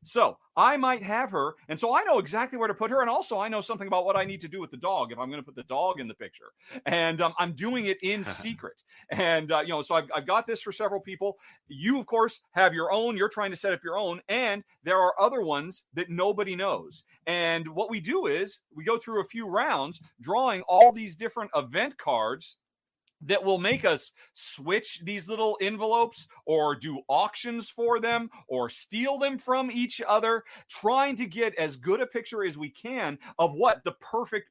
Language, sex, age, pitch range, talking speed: English, male, 40-59, 155-230 Hz, 225 wpm